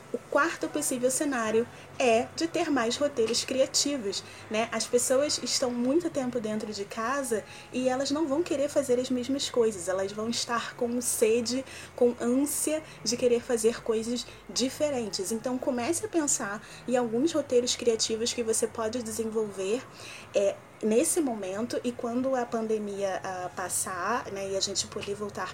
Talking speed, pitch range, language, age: 155 wpm, 220-270 Hz, Portuguese, 20-39